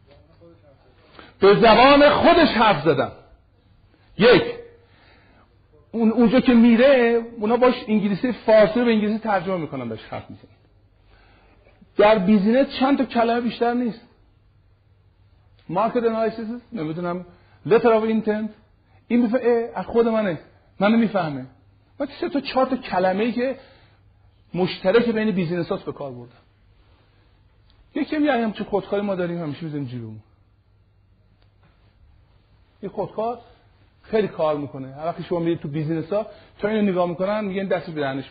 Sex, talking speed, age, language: male, 125 wpm, 50-69, Persian